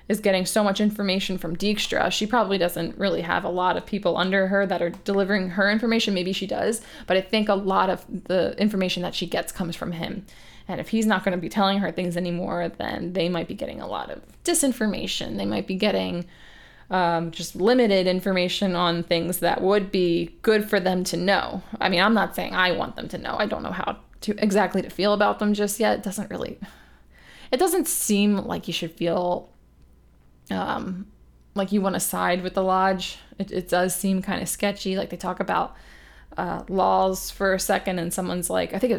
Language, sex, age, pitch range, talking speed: English, female, 20-39, 180-210 Hz, 215 wpm